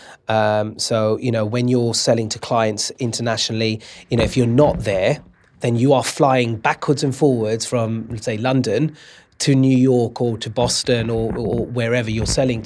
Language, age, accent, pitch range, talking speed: English, 30-49, British, 110-125 Hz, 175 wpm